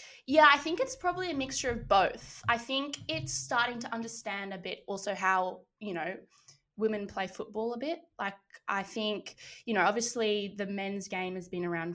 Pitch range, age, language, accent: 175-210 Hz, 10-29, English, Australian